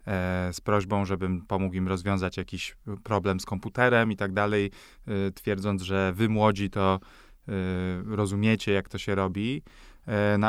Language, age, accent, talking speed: English, 20-39, Polish, 135 wpm